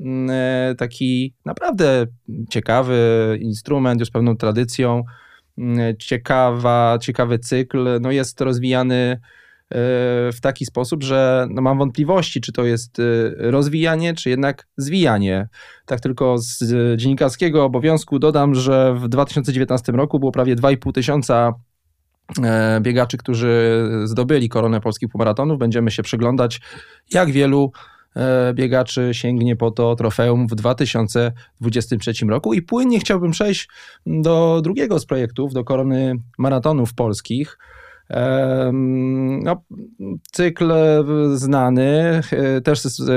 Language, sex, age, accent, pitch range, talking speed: Polish, male, 20-39, native, 120-140 Hz, 100 wpm